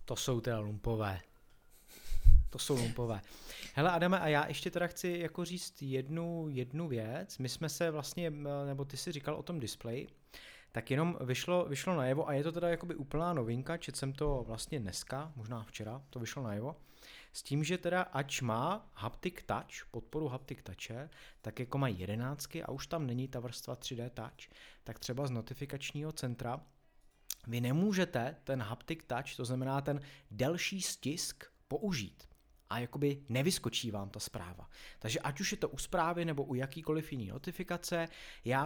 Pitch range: 125-160 Hz